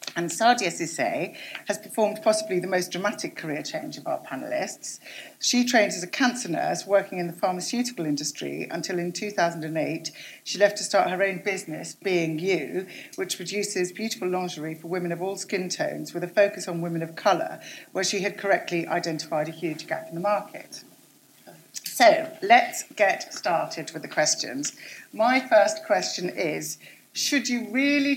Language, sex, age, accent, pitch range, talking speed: English, female, 50-69, British, 170-270 Hz, 170 wpm